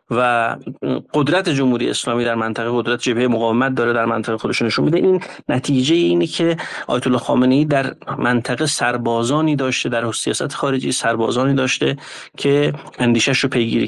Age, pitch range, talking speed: 30-49, 120-150 Hz, 145 wpm